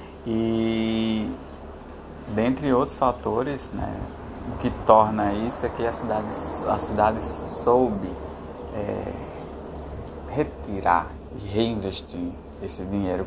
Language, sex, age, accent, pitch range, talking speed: Portuguese, male, 20-39, Brazilian, 90-110 Hz, 90 wpm